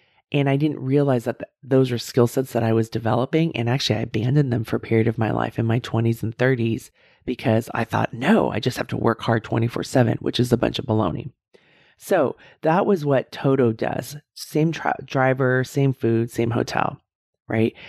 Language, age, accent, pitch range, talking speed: English, 30-49, American, 115-135 Hz, 200 wpm